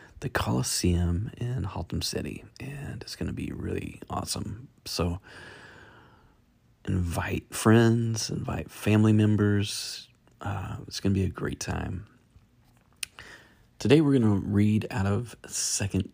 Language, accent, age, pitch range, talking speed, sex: English, American, 30-49, 90-115 Hz, 120 wpm, male